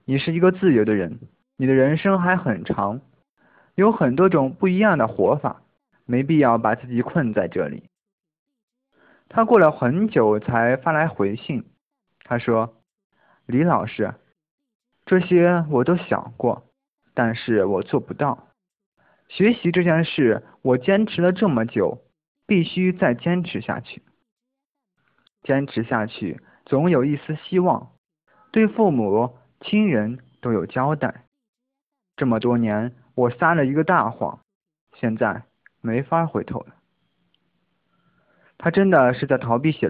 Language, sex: Chinese, male